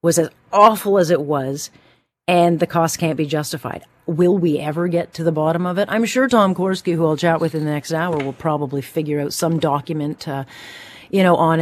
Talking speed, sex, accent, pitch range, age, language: 220 wpm, female, American, 155-200 Hz, 40-59, English